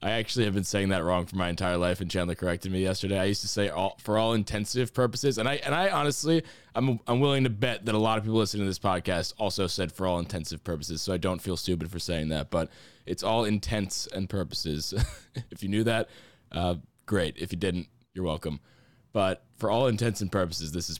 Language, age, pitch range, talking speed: English, 20-39, 90-115 Hz, 235 wpm